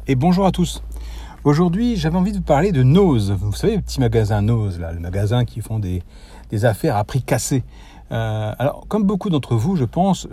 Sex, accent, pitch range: male, French, 105-160 Hz